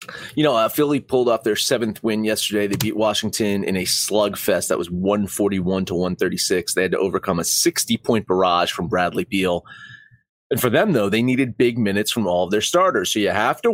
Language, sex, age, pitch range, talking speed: English, male, 30-49, 100-150 Hz, 210 wpm